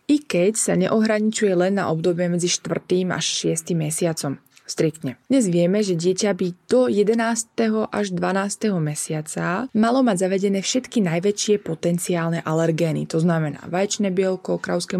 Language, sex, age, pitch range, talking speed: Slovak, female, 20-39, 170-225 Hz, 140 wpm